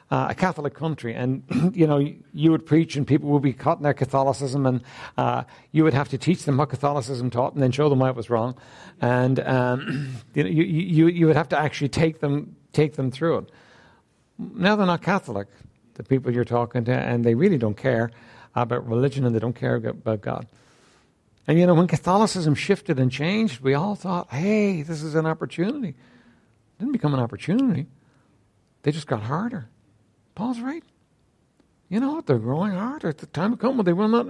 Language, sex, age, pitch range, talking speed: English, male, 60-79, 135-210 Hz, 205 wpm